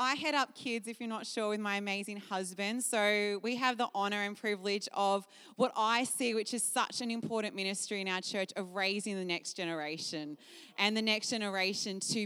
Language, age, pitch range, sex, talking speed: English, 20-39, 200-270 Hz, female, 205 wpm